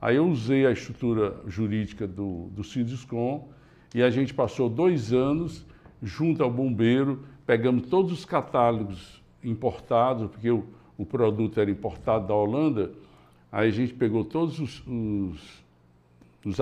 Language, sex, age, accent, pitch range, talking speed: Portuguese, male, 60-79, Brazilian, 110-145 Hz, 135 wpm